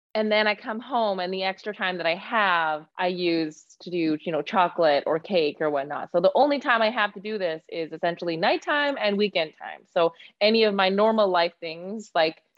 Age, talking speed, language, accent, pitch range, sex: 20-39, 220 wpm, English, American, 165-210 Hz, female